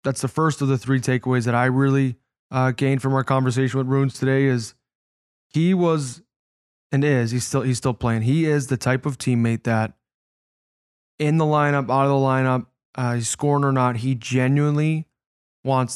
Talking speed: 185 wpm